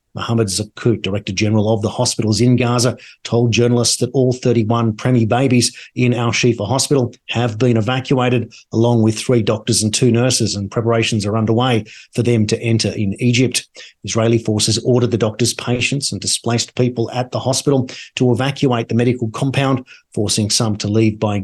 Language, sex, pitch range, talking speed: English, male, 110-125 Hz, 170 wpm